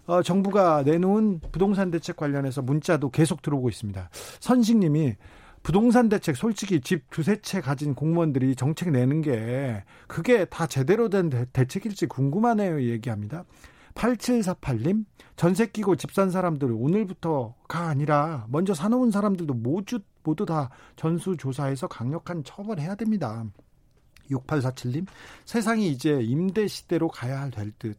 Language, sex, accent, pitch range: Korean, male, native, 130-185 Hz